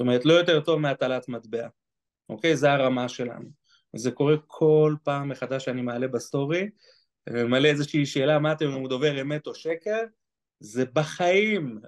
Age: 30-49